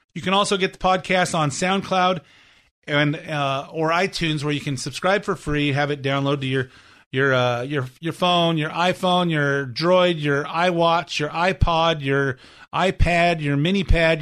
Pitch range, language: 135-175 Hz, English